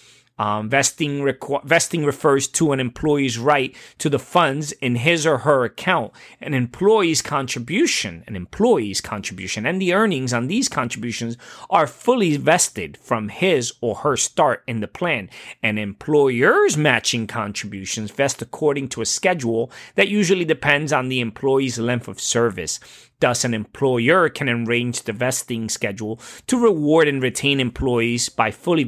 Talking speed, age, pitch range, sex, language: 150 wpm, 30-49, 115-155 Hz, male, English